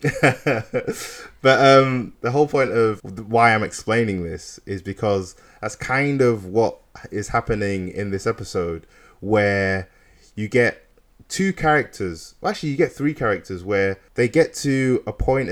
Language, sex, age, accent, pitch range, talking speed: English, male, 20-39, British, 95-115 Hz, 145 wpm